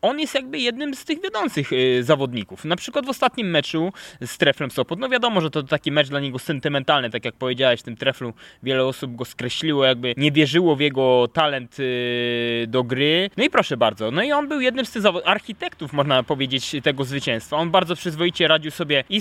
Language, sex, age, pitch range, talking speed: English, male, 20-39, 150-185 Hz, 205 wpm